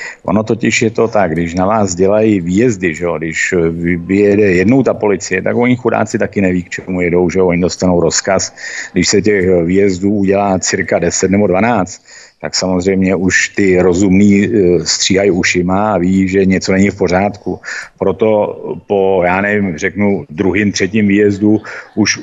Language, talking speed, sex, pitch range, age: Czech, 160 wpm, male, 90-105 Hz, 50-69